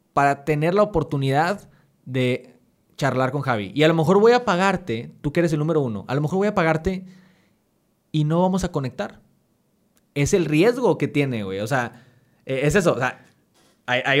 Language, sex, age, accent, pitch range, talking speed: Spanish, male, 20-39, Mexican, 140-185 Hz, 190 wpm